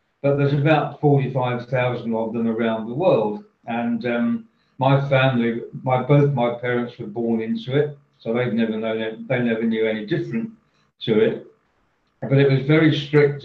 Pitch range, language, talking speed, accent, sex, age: 115-135 Hz, English, 175 wpm, British, male, 50-69